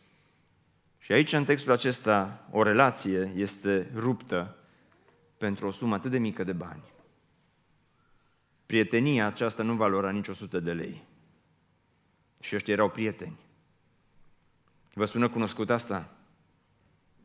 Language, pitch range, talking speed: Romanian, 125-195 Hz, 120 wpm